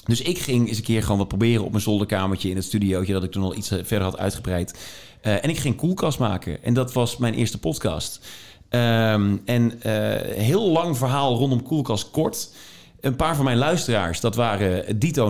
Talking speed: 205 wpm